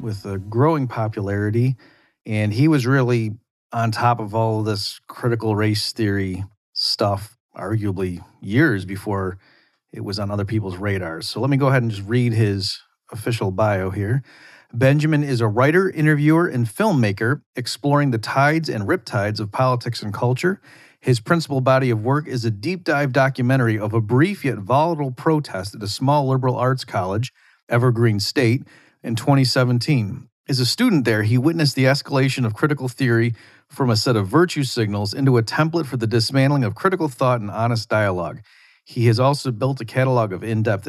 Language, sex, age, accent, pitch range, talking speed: English, male, 40-59, American, 105-135 Hz, 170 wpm